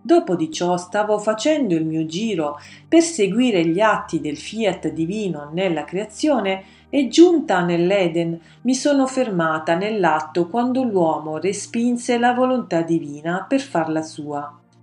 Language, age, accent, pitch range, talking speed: Italian, 40-59, native, 160-235 Hz, 135 wpm